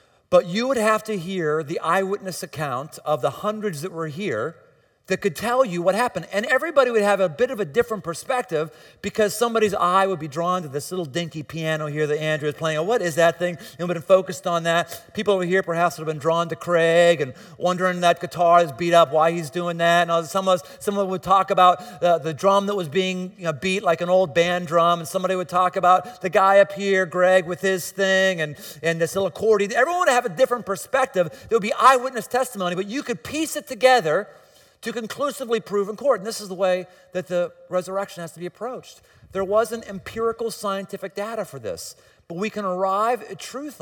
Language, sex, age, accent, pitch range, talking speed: English, male, 40-59, American, 170-210 Hz, 230 wpm